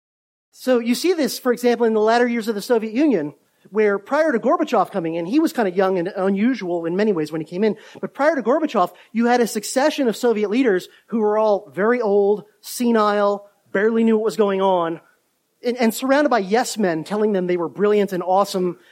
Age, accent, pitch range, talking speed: 30-49, American, 180-240 Hz, 220 wpm